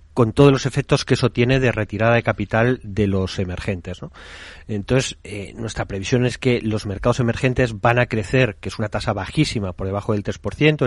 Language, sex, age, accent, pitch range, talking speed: Spanish, male, 40-59, Spanish, 100-125 Hz, 195 wpm